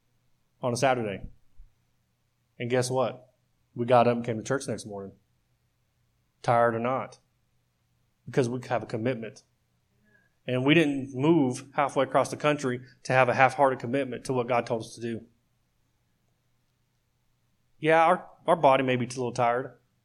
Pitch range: 115-130 Hz